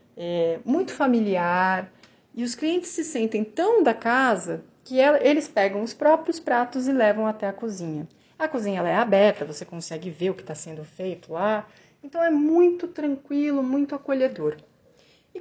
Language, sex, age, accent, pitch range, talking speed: Portuguese, female, 30-49, Brazilian, 195-275 Hz, 165 wpm